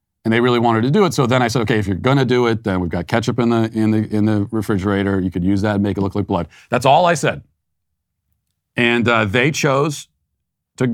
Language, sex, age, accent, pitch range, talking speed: English, male, 40-59, American, 100-135 Hz, 260 wpm